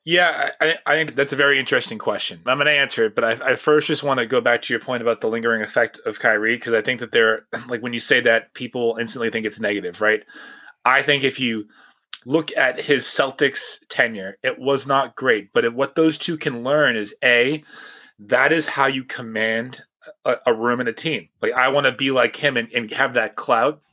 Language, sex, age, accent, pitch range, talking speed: English, male, 30-49, American, 120-155 Hz, 235 wpm